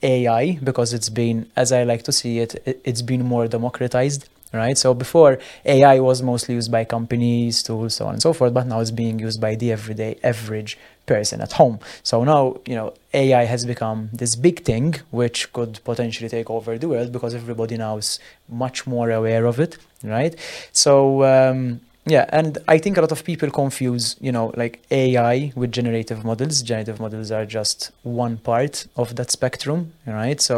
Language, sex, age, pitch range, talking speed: English, male, 20-39, 115-135 Hz, 190 wpm